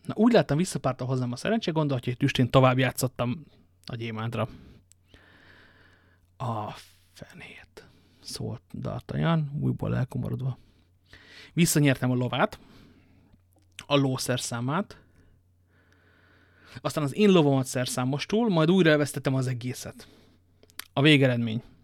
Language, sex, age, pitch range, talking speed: Hungarian, male, 30-49, 95-145 Hz, 100 wpm